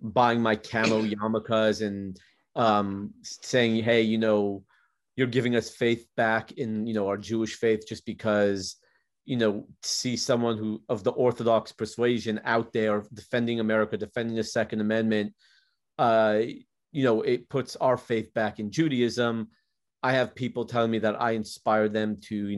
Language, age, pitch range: English, 30-49, 110-125 Hz